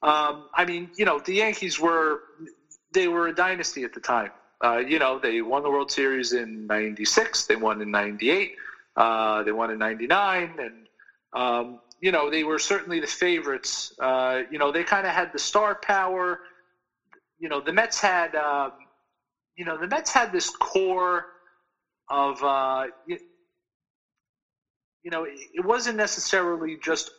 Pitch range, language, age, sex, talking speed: 130-180 Hz, English, 40-59, male, 160 wpm